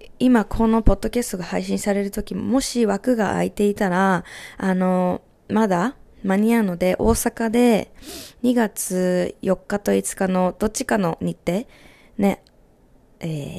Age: 20-39